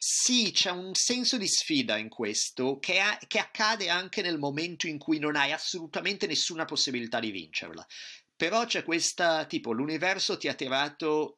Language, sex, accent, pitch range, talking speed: Italian, male, native, 125-175 Hz, 170 wpm